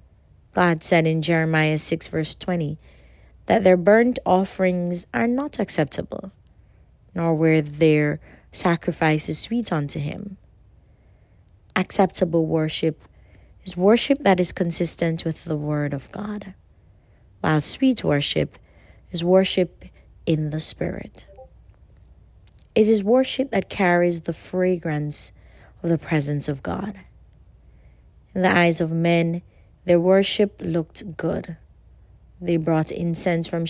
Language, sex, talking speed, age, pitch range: English, female, 120 wpm, 30-49, 150-185 Hz